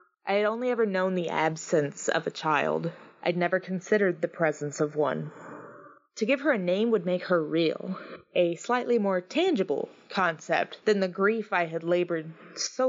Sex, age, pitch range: female, 20-39, 170-200 Hz